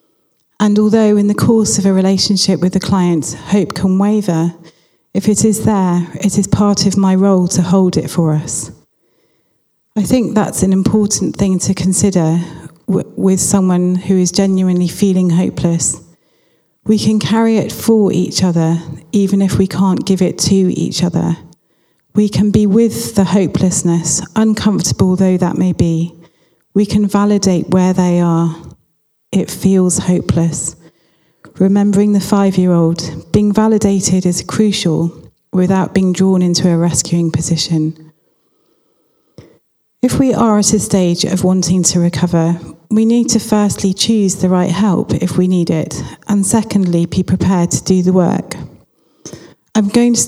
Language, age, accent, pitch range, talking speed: English, 40-59, British, 170-205 Hz, 150 wpm